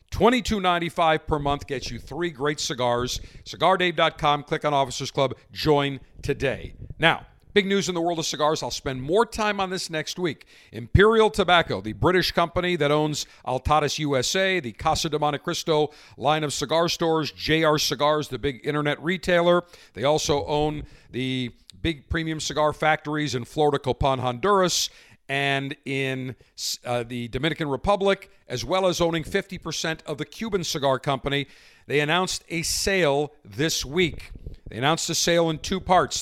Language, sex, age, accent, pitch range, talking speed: English, male, 50-69, American, 135-175 Hz, 160 wpm